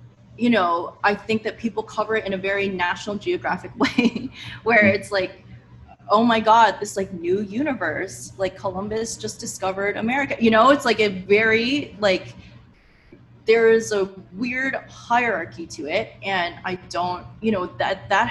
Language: English